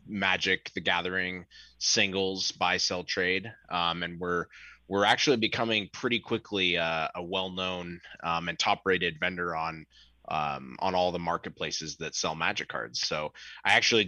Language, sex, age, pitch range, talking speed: English, male, 20-39, 85-105 Hz, 155 wpm